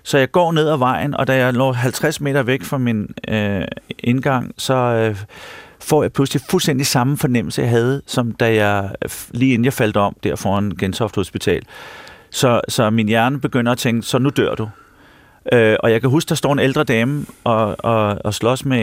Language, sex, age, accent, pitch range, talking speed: Danish, male, 40-59, native, 115-150 Hz, 205 wpm